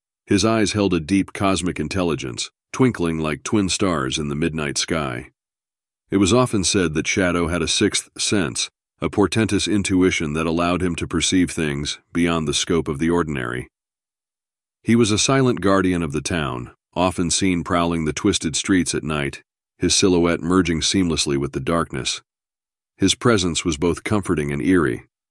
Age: 40-59